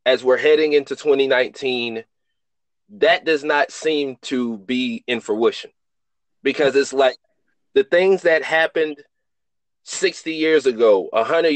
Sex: male